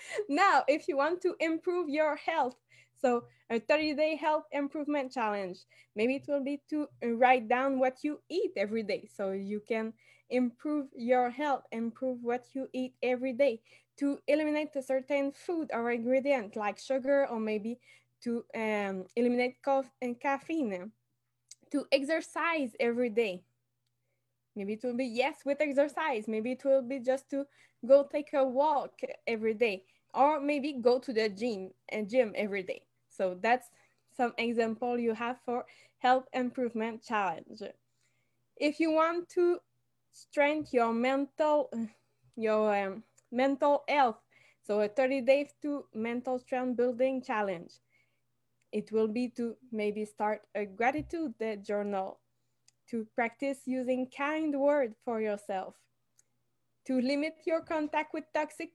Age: 10-29